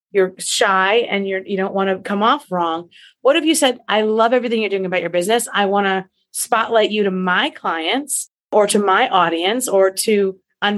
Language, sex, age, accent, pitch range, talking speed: English, female, 30-49, American, 185-235 Hz, 210 wpm